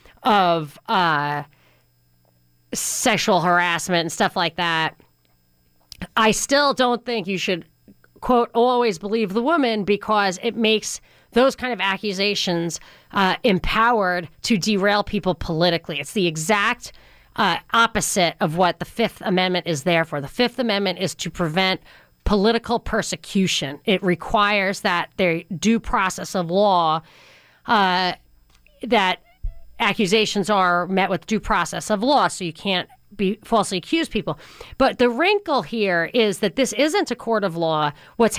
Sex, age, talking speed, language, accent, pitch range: female, 40-59, 140 wpm, English, American, 175-230 Hz